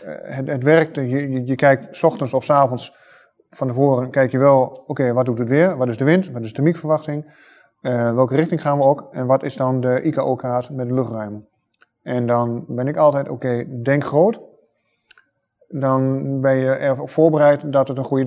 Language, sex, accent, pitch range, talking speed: Dutch, male, Dutch, 125-150 Hz, 205 wpm